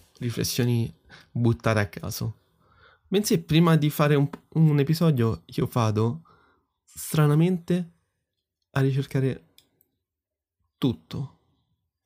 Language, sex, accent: Italian, male, native